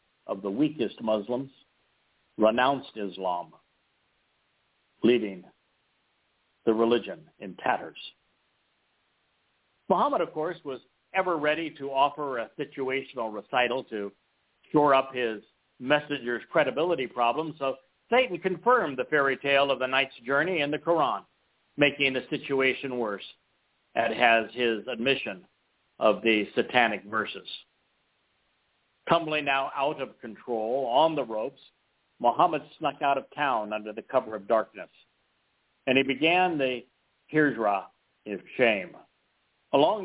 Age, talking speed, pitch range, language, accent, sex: 60-79, 120 wpm, 115-150 Hz, English, American, male